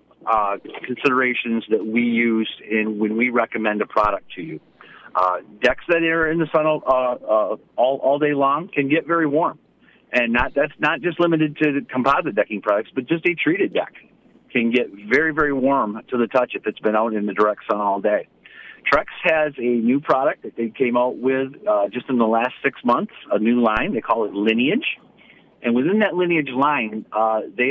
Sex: male